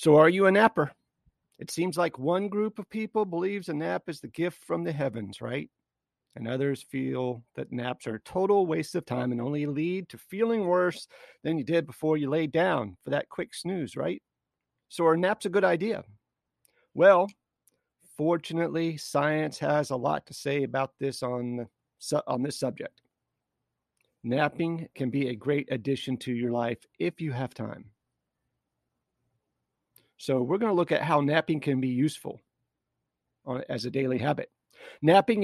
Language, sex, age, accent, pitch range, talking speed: English, male, 40-59, American, 125-170 Hz, 170 wpm